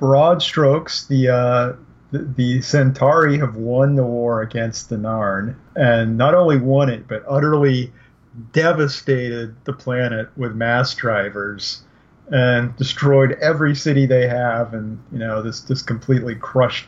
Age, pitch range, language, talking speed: 40-59, 115-140 Hz, English, 140 wpm